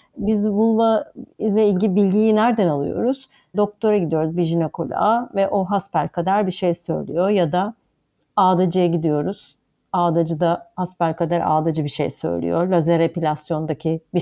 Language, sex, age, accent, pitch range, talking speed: Turkish, female, 60-79, native, 170-210 Hz, 135 wpm